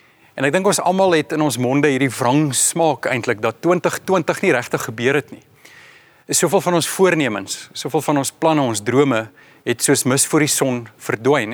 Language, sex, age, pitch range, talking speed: English, male, 40-59, 130-170 Hz, 185 wpm